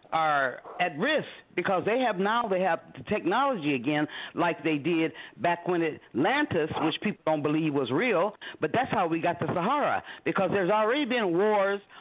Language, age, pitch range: English, 50-69, 165-225 Hz